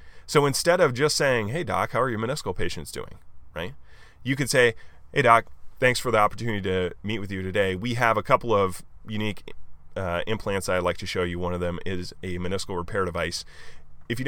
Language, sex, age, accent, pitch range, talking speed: English, male, 20-39, American, 90-120 Hz, 215 wpm